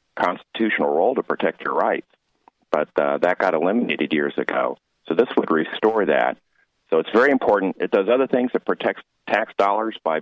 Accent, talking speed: American, 180 wpm